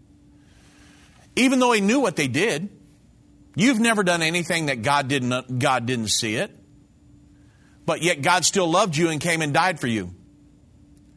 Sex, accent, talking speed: male, American, 160 wpm